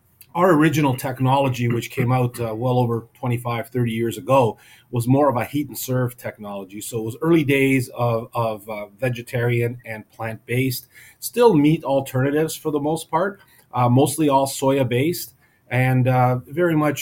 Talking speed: 165 wpm